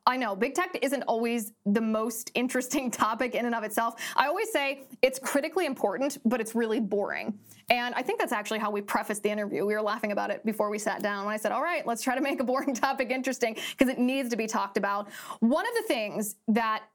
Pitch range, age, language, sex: 215-265 Hz, 20-39, English, female